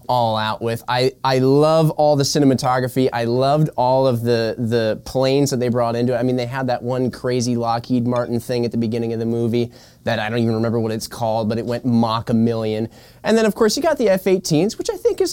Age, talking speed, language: 20-39, 245 wpm, English